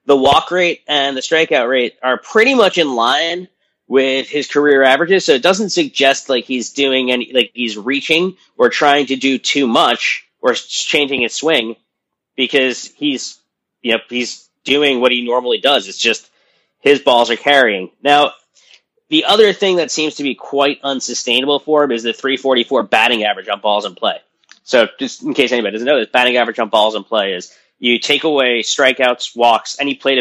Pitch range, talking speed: 115-145 Hz, 190 wpm